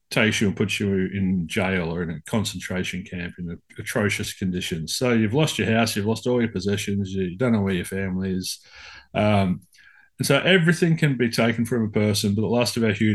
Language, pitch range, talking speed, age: English, 100-130 Hz, 220 wpm, 30-49